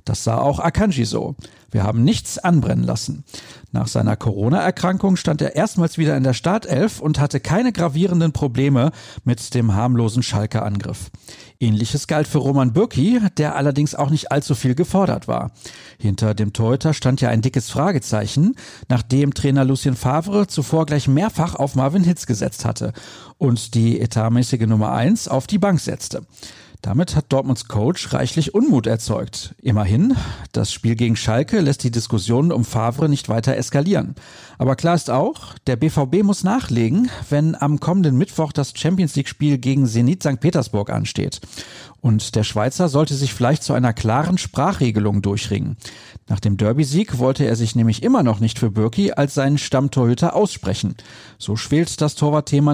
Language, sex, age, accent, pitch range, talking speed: German, male, 50-69, German, 115-150 Hz, 160 wpm